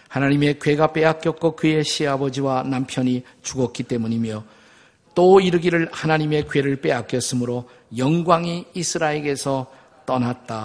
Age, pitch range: 50-69, 125-165 Hz